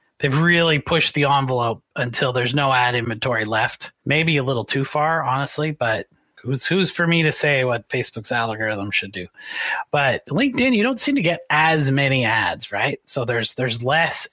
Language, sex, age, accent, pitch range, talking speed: English, male, 30-49, American, 120-150 Hz, 185 wpm